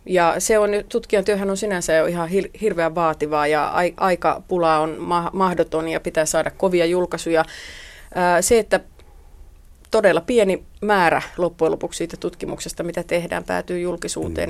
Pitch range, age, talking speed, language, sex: 160-190 Hz, 30-49, 135 wpm, Finnish, female